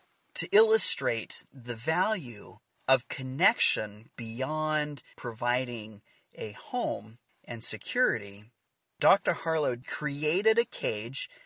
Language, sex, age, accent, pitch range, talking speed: English, male, 30-49, American, 120-160 Hz, 90 wpm